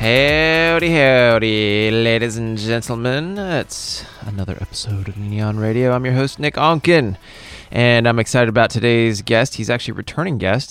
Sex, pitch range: male, 100-115 Hz